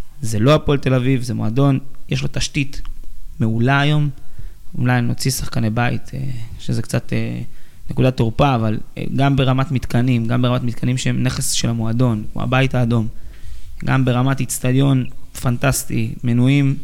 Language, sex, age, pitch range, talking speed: Hebrew, male, 20-39, 120-135 Hz, 140 wpm